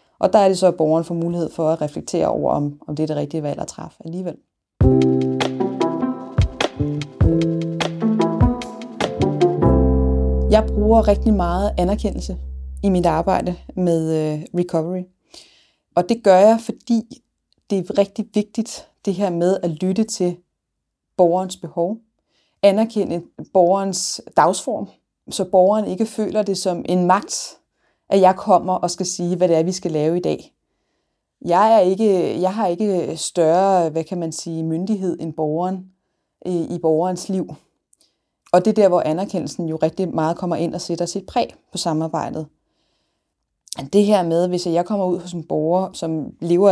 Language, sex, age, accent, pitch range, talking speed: Danish, female, 20-39, native, 165-200 Hz, 155 wpm